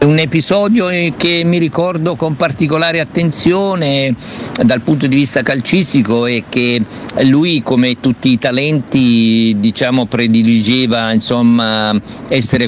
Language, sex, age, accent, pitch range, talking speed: Italian, male, 50-69, native, 110-130 Hz, 115 wpm